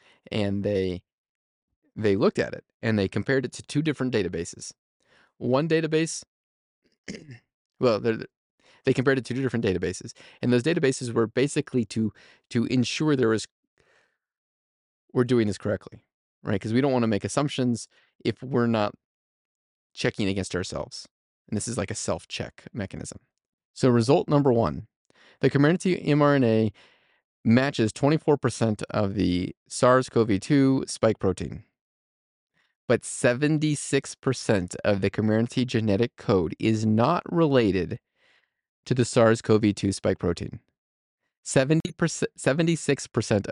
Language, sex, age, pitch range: English, male, 30-49, 100-130 Hz